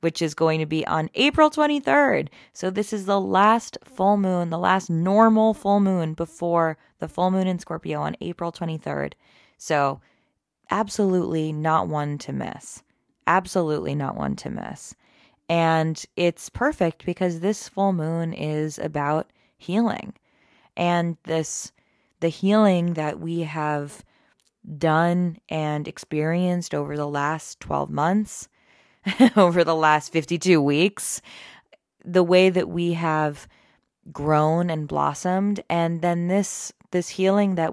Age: 20-39